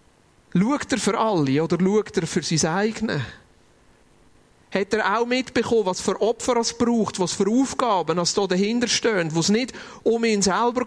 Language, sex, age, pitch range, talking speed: German, male, 40-59, 155-205 Hz, 175 wpm